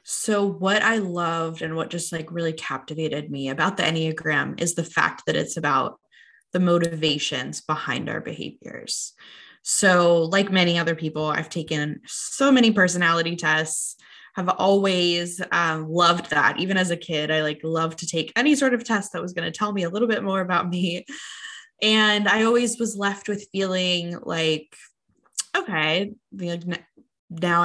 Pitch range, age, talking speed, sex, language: 160-200 Hz, 20-39, 170 wpm, female, English